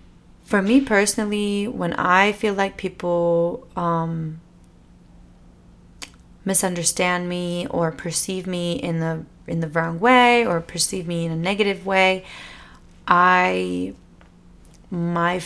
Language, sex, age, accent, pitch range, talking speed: English, female, 30-49, American, 165-195 Hz, 115 wpm